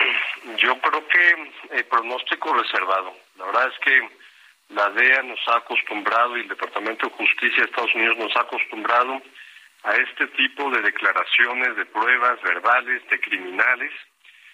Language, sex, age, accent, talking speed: Spanish, male, 50-69, Mexican, 155 wpm